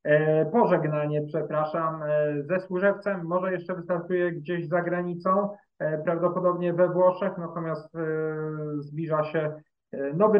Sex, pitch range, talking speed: male, 150-175 Hz, 100 wpm